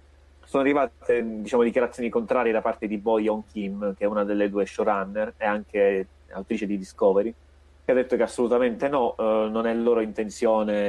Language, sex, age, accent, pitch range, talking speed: Italian, male, 30-49, native, 100-120 Hz, 180 wpm